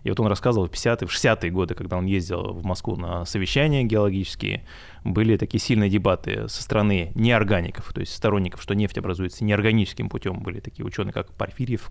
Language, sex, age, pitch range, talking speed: Russian, male, 20-39, 95-115 Hz, 185 wpm